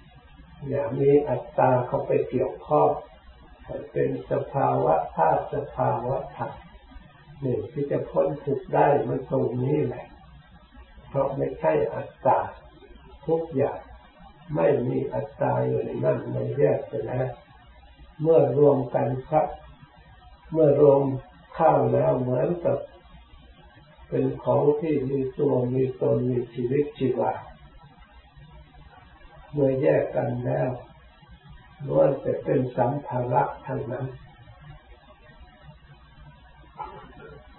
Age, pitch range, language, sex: 60-79, 115-145 Hz, Thai, female